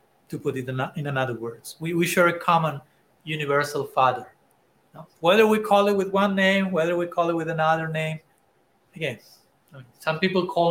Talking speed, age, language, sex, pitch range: 175 wpm, 30-49, English, male, 155-185 Hz